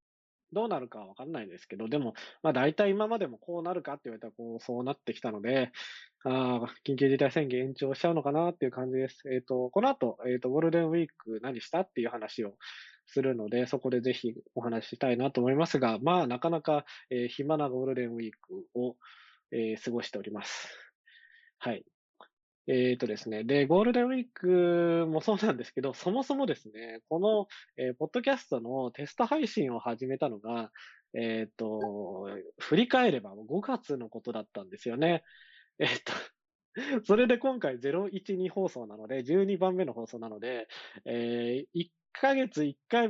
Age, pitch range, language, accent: 20-39, 125-180 Hz, Japanese, native